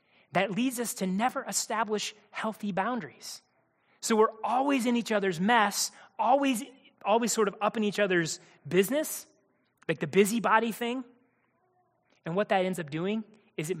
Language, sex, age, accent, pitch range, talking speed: English, male, 30-49, American, 175-245 Hz, 155 wpm